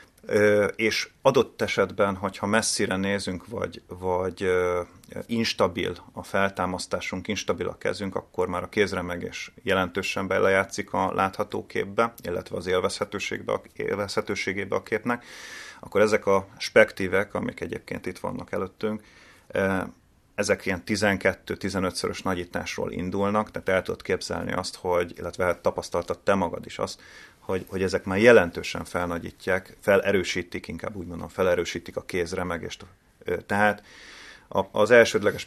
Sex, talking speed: male, 120 wpm